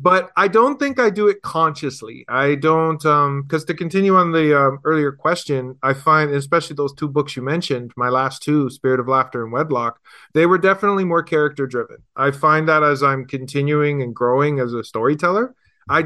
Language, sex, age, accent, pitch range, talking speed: English, male, 30-49, American, 135-165 Hz, 195 wpm